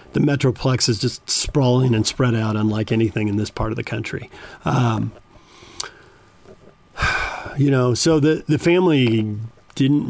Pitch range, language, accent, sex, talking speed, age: 110-145 Hz, English, American, male, 145 wpm, 40-59